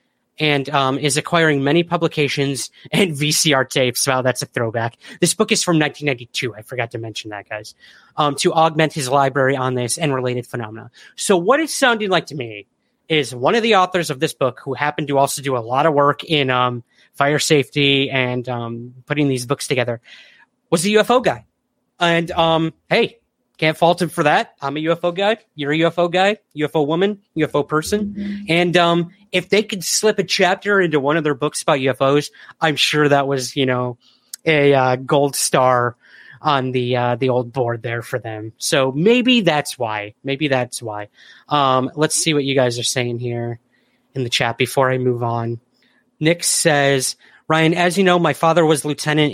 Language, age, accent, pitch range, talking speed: English, 30-49, American, 125-160 Hz, 195 wpm